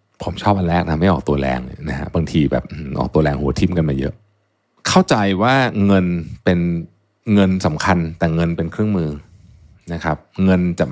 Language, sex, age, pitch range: Thai, male, 60-79, 85-110 Hz